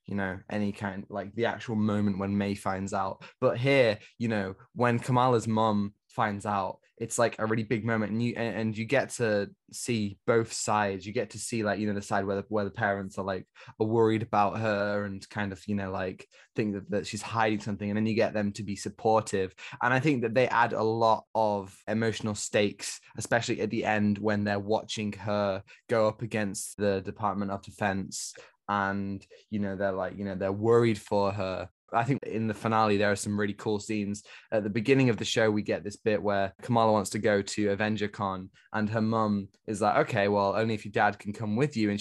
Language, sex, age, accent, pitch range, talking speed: English, male, 10-29, British, 100-115 Hz, 225 wpm